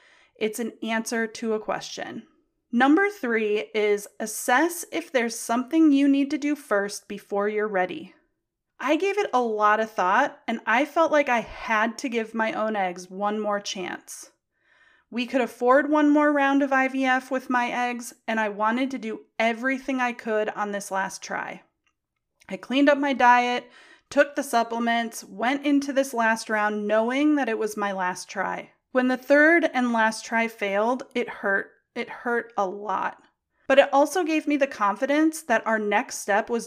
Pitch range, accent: 210-270 Hz, American